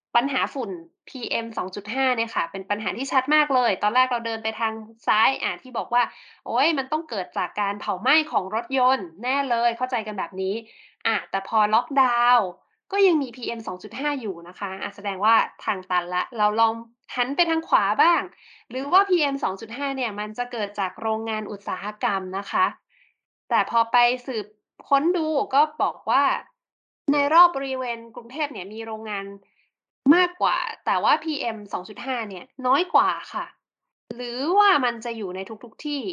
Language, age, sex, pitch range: Thai, 20-39, female, 215-285 Hz